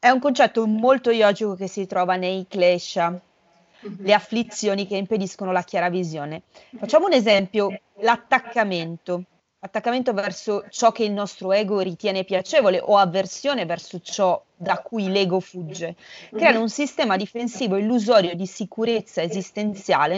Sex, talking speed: female, 135 wpm